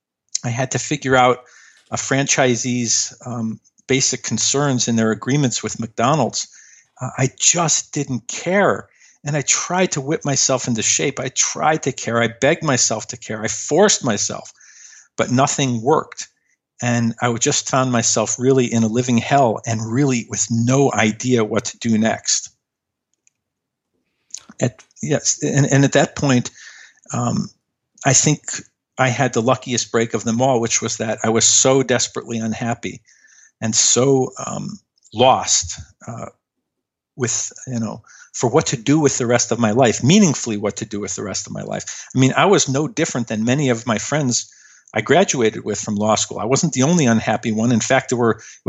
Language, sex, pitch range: English, male, 115-135 Hz